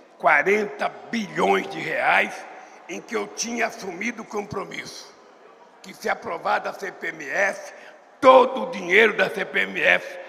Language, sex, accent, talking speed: Portuguese, male, Brazilian, 120 wpm